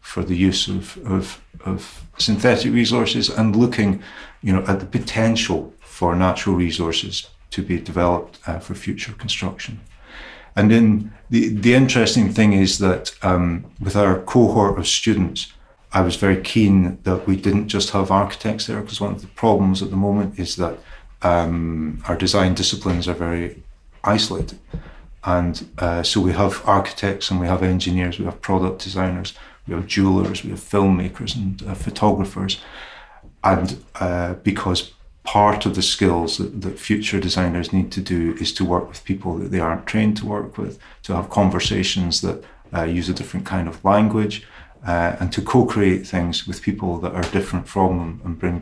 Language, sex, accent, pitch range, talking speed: English, male, British, 90-105 Hz, 175 wpm